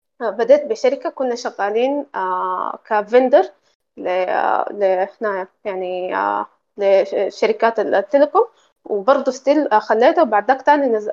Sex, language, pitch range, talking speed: female, Arabic, 205-270 Hz, 80 wpm